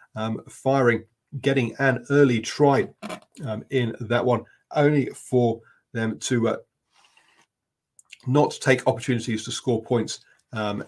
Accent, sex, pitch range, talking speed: British, male, 110-130 Hz, 115 wpm